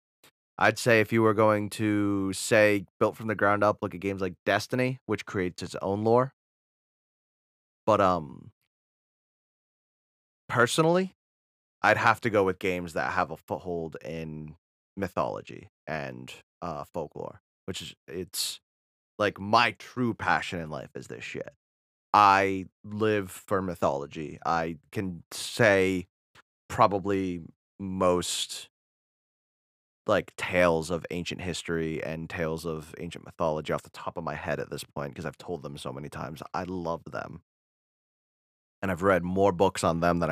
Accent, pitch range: American, 75-95 Hz